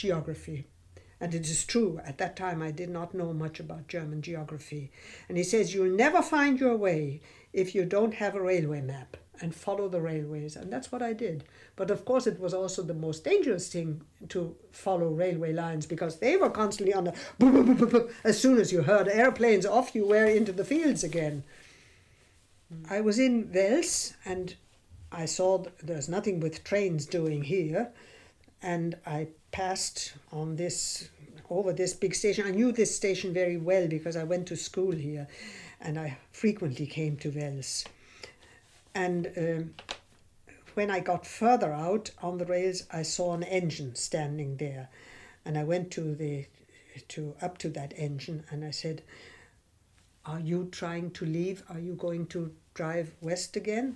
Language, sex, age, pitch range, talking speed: English, female, 60-79, 155-190 Hz, 170 wpm